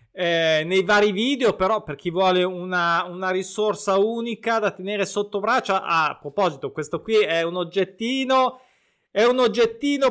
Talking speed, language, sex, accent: 155 wpm, Italian, male, native